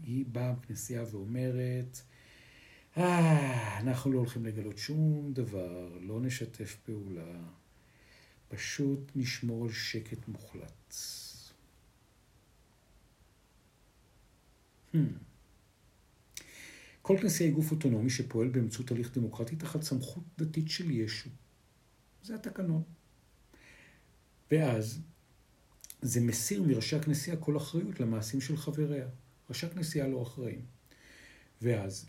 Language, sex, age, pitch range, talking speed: Hebrew, male, 50-69, 115-150 Hz, 95 wpm